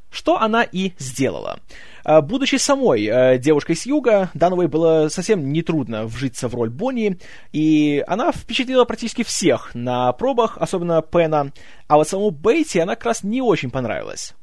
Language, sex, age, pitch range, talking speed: Russian, male, 20-39, 140-215 Hz, 150 wpm